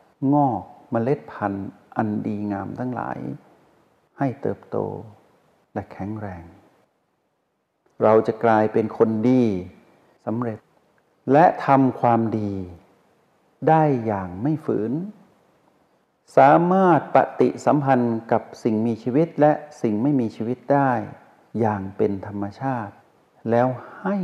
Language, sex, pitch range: Thai, male, 105-135 Hz